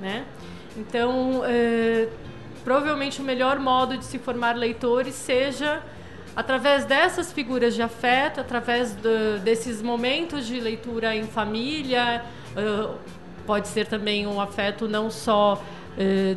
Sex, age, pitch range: female, 40-59, 215-265 Hz